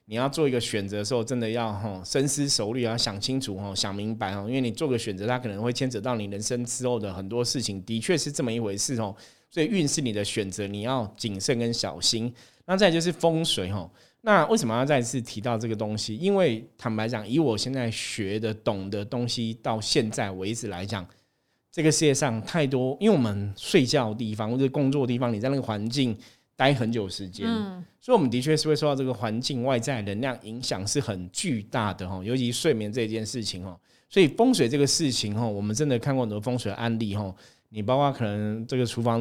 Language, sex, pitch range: Chinese, male, 110-135 Hz